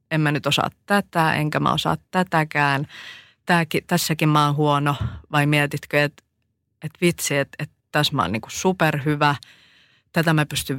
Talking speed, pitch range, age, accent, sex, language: 150 wpm, 145-165 Hz, 30-49, native, female, Finnish